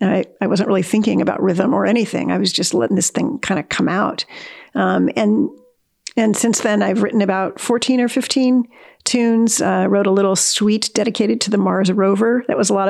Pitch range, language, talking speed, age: 195-225 Hz, English, 215 wpm, 50-69